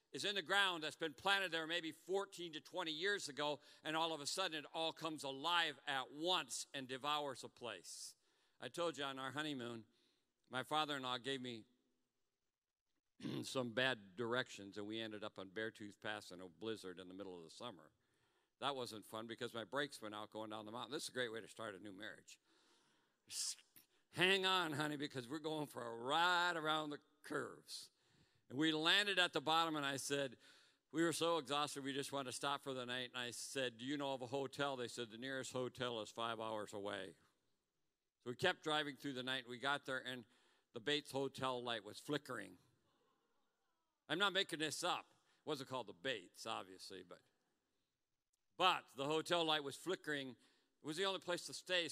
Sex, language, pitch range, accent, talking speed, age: male, English, 125-155 Hz, American, 200 wpm, 50-69